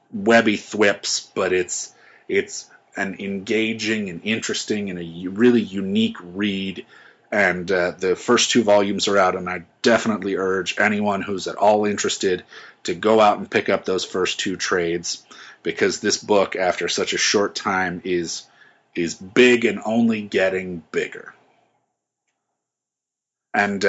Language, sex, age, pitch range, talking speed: English, male, 30-49, 90-110 Hz, 145 wpm